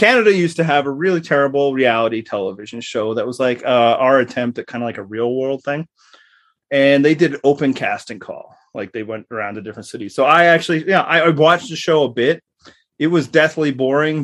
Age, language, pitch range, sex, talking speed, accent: 30-49, English, 120-165 Hz, male, 220 wpm, American